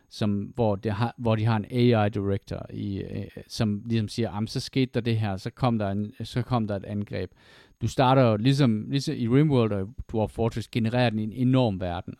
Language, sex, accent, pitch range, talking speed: Danish, male, native, 105-125 Hz, 200 wpm